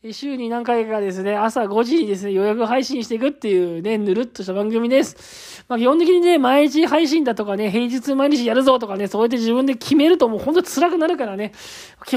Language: Japanese